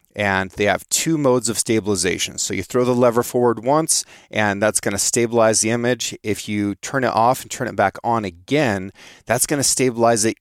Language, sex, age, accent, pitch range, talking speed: English, male, 30-49, American, 100-125 Hz, 200 wpm